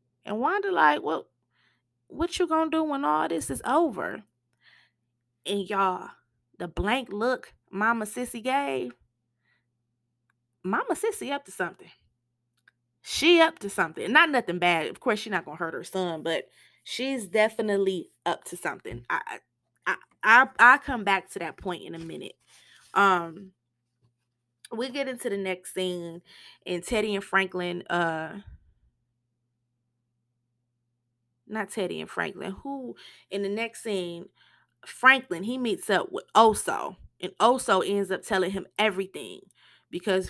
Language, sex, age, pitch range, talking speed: English, female, 20-39, 155-210 Hz, 140 wpm